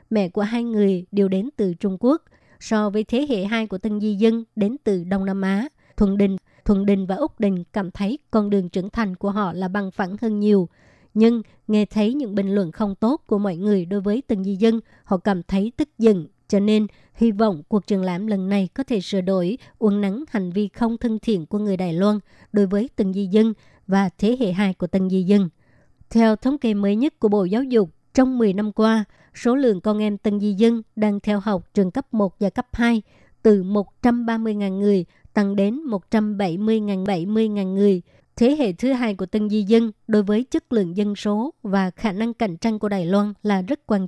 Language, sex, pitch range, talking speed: Vietnamese, male, 195-225 Hz, 230 wpm